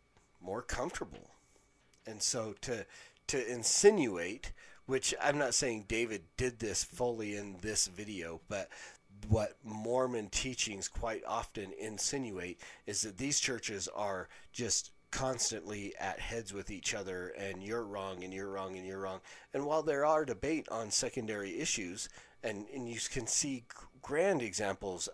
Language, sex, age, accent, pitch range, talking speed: English, male, 40-59, American, 95-125 Hz, 145 wpm